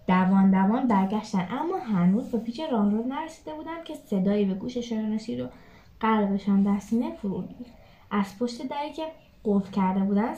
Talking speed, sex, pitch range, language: 150 wpm, female, 210-300 Hz, Persian